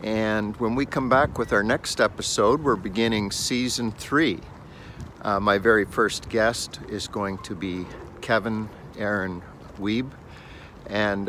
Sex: male